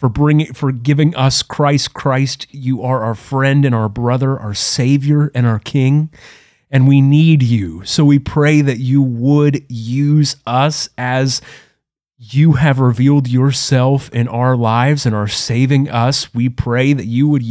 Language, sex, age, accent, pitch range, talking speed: English, male, 30-49, American, 120-145 Hz, 165 wpm